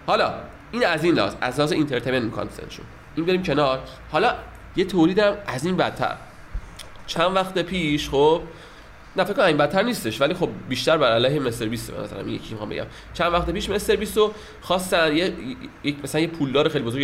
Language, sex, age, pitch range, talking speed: Persian, male, 30-49, 130-190 Hz, 180 wpm